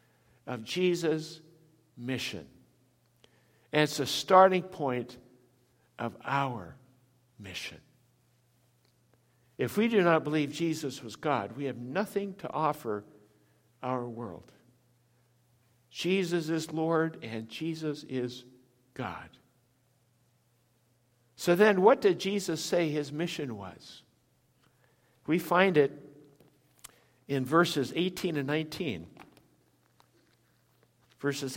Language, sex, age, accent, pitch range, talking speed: English, male, 60-79, American, 120-160 Hz, 95 wpm